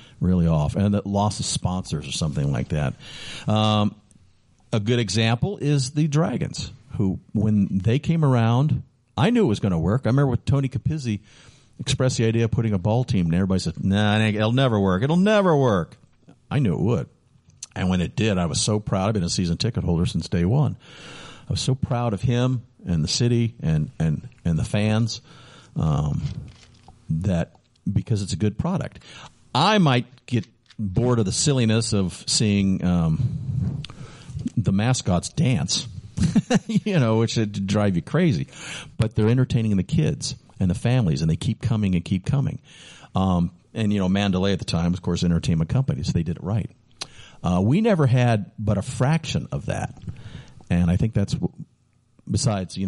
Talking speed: 185 wpm